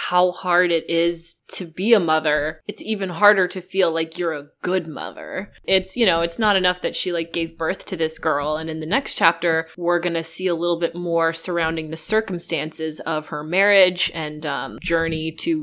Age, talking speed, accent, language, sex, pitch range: 20-39, 205 wpm, American, English, female, 160-185 Hz